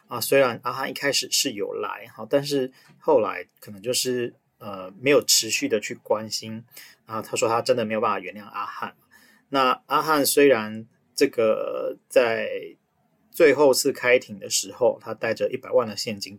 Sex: male